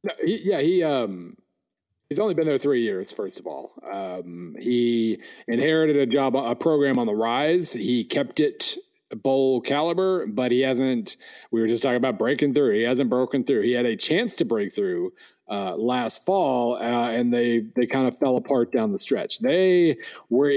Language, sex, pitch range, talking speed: English, male, 120-165 Hz, 195 wpm